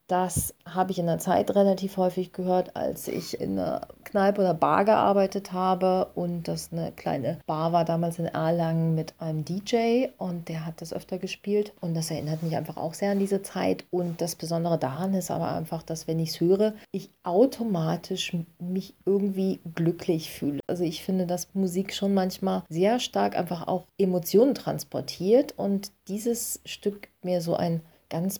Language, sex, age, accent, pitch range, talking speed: German, female, 30-49, German, 165-200 Hz, 180 wpm